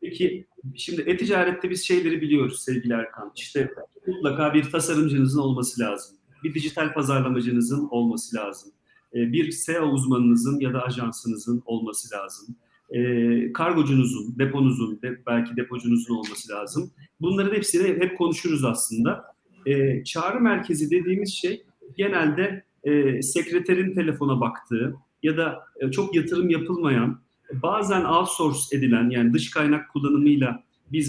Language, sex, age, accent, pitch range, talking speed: Turkish, male, 40-59, native, 125-165 Hz, 120 wpm